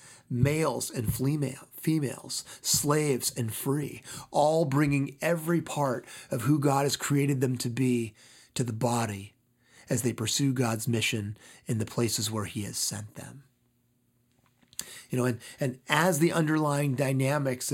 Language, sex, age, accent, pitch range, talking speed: English, male, 30-49, American, 115-135 Hz, 145 wpm